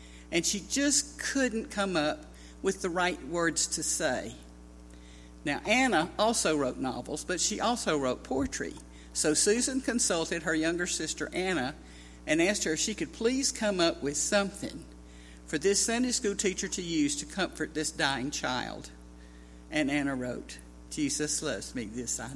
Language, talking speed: English, 160 wpm